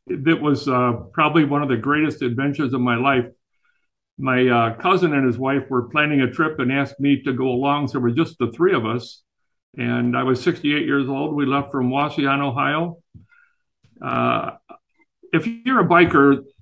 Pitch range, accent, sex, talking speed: 130-155 Hz, American, male, 185 wpm